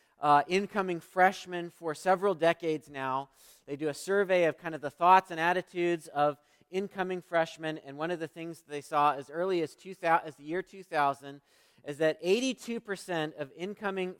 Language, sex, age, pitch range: English, male, 40-59, 145-185 Hz